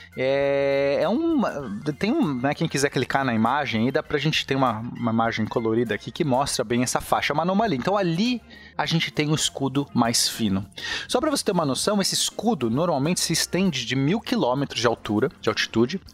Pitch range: 125-195 Hz